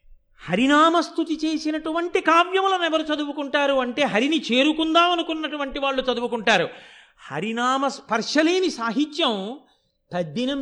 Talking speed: 90 wpm